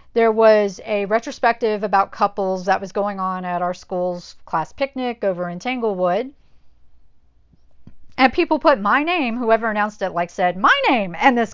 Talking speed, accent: 165 wpm, American